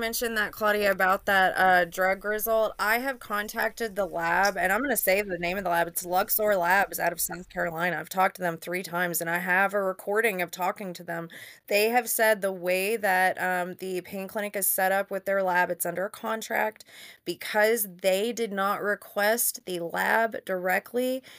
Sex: female